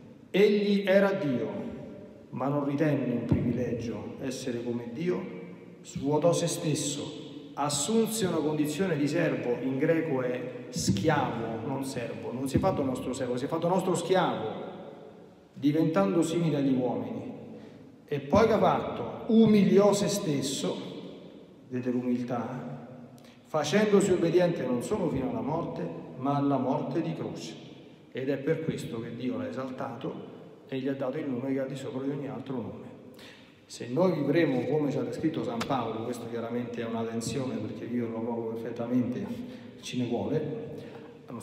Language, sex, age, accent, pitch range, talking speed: Italian, male, 40-59, native, 125-160 Hz, 150 wpm